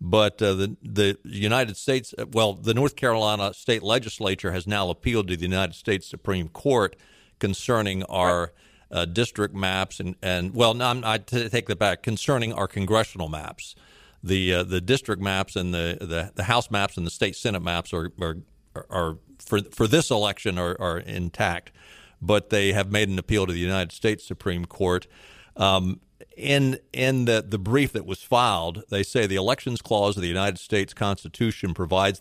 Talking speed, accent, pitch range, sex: 185 wpm, American, 95-120 Hz, male